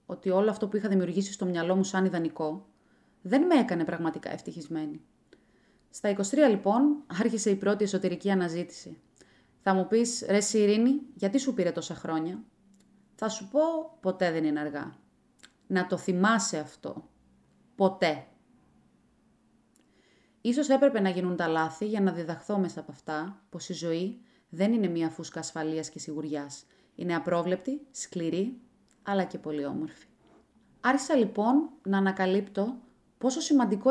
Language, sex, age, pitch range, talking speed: Greek, female, 30-49, 175-230 Hz, 145 wpm